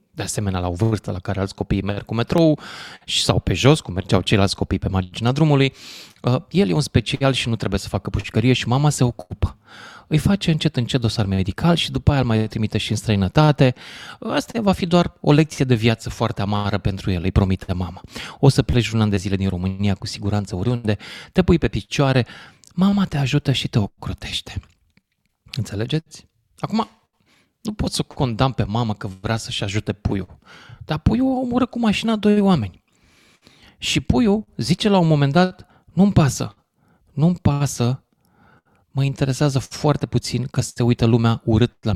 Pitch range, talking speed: 105-145 Hz, 185 wpm